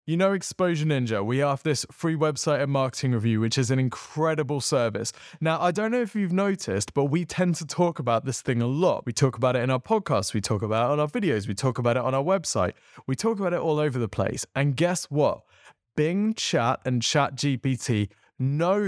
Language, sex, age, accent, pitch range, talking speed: English, male, 20-39, British, 120-160 Hz, 230 wpm